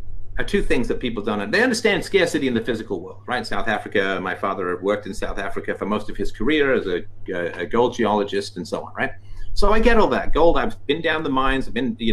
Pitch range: 100-155 Hz